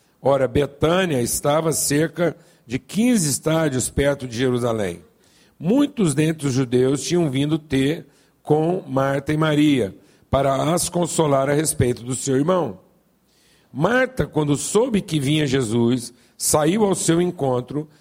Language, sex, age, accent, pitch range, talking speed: Portuguese, male, 50-69, Brazilian, 135-175 Hz, 130 wpm